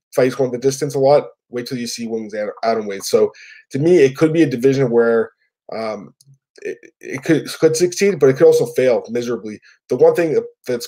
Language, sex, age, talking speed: English, male, 20-39, 220 wpm